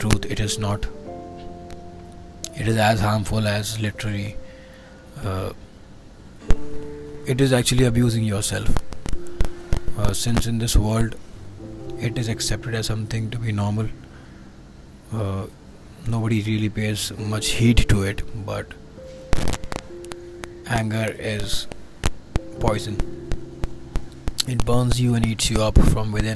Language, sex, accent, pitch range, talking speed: English, male, Indian, 95-110 Hz, 110 wpm